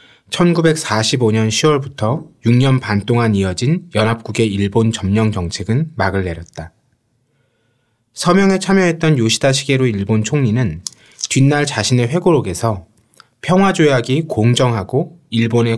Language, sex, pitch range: Korean, male, 110-150 Hz